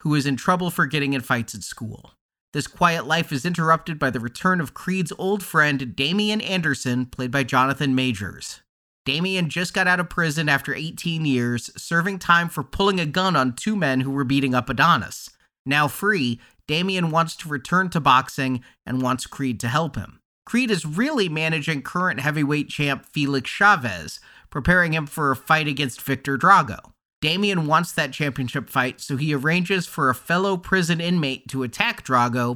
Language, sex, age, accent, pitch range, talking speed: English, male, 30-49, American, 130-175 Hz, 180 wpm